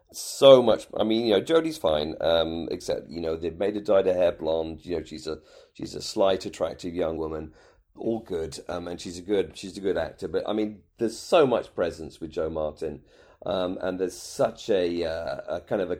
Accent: British